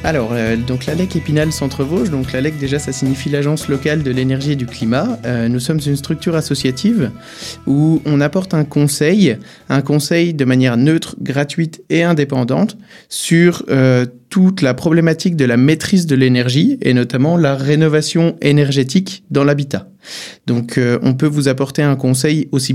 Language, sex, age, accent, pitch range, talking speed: French, male, 20-39, French, 125-155 Hz, 165 wpm